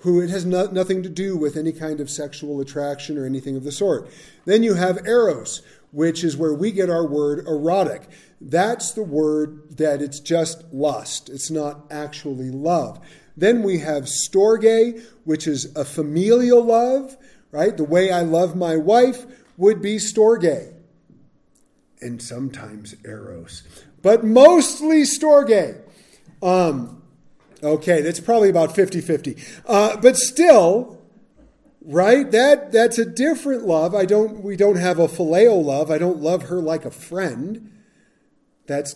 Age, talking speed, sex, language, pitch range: 40-59, 145 wpm, male, English, 150-210 Hz